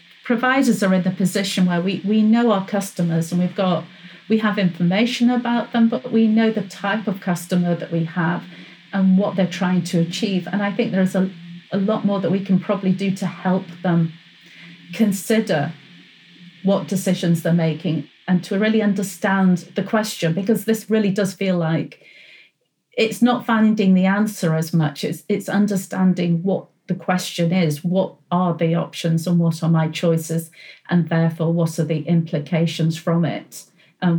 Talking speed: 175 wpm